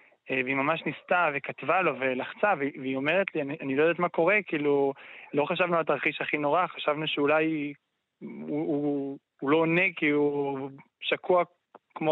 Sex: male